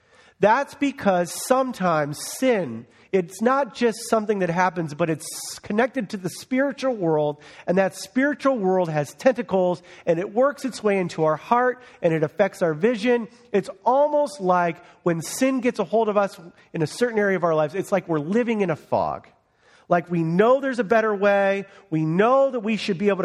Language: English